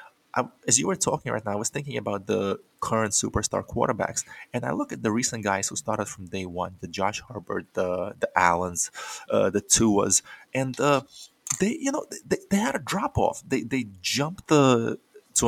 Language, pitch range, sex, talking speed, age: English, 100-130 Hz, male, 200 wpm, 20-39